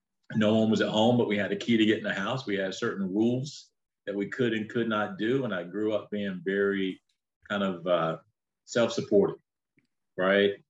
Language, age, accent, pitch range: English, 40-59, American, 95-115 Hz